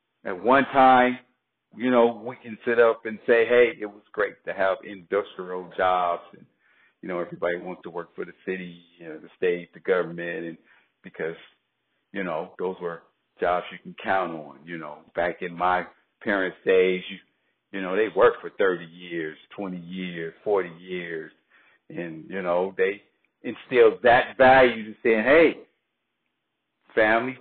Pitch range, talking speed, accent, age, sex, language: 95-125 Hz, 160 wpm, American, 50-69, male, English